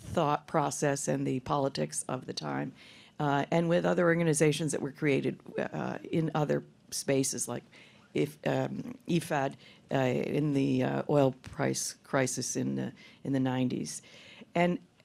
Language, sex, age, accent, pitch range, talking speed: English, female, 50-69, American, 140-185 Hz, 150 wpm